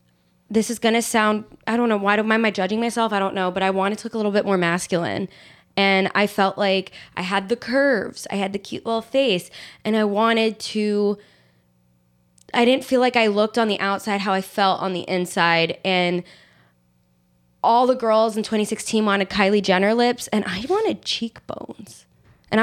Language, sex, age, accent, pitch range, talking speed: English, female, 20-39, American, 185-220 Hz, 195 wpm